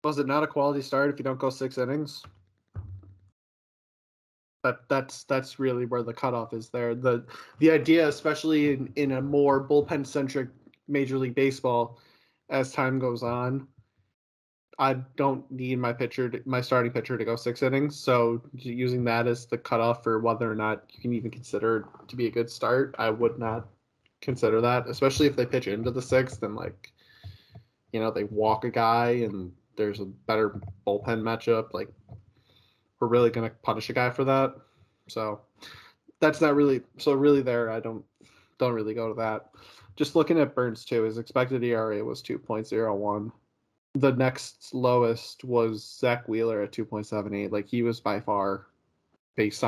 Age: 20-39